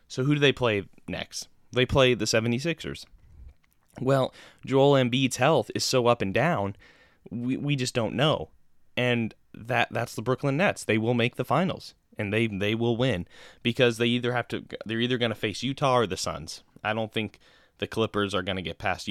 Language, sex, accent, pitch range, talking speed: English, male, American, 100-125 Hz, 200 wpm